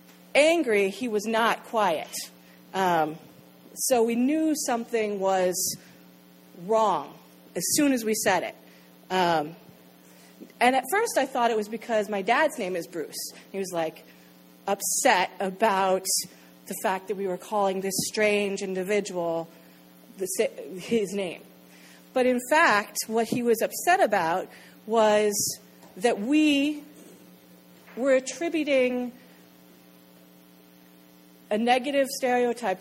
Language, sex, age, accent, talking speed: English, female, 40-59, American, 120 wpm